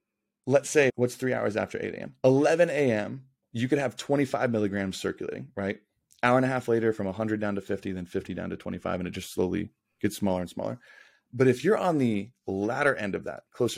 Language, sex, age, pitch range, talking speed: English, male, 30-49, 105-135 Hz, 220 wpm